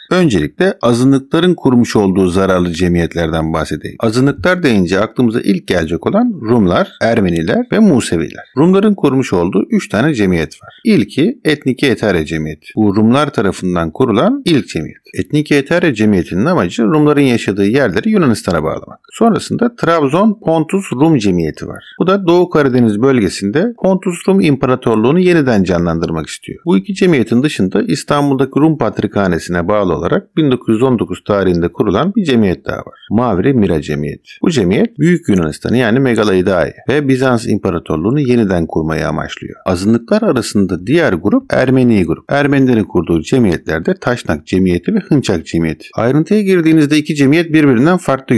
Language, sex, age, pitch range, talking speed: Turkish, male, 50-69, 95-160 Hz, 140 wpm